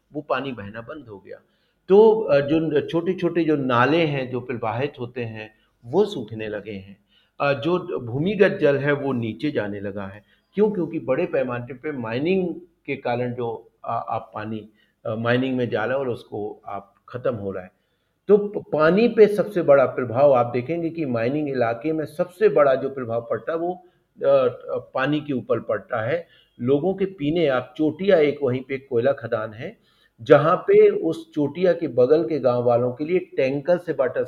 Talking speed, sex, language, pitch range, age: 55 wpm, male, Telugu, 115-165 Hz, 50-69